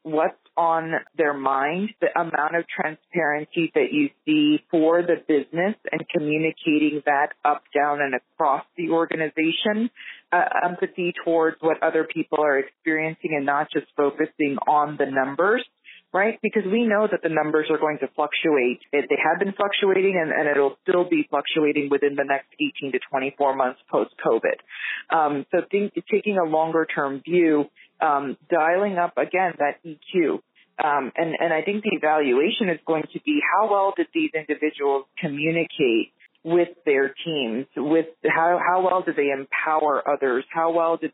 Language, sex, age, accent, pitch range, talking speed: English, female, 30-49, American, 145-180 Hz, 160 wpm